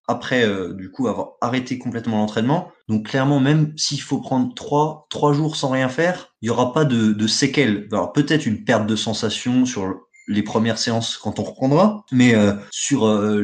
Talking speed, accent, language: 195 wpm, French, French